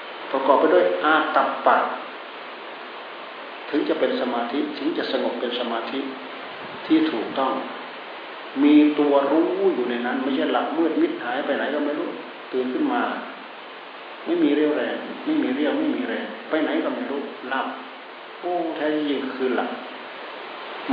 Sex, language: male, Thai